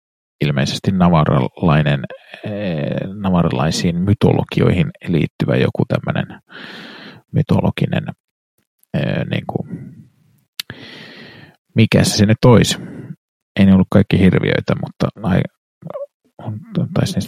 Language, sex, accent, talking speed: Finnish, male, native, 65 wpm